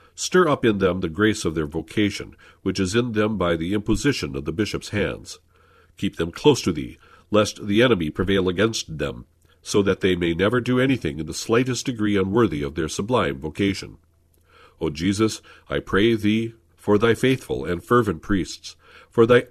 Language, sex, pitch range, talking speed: English, male, 85-115 Hz, 185 wpm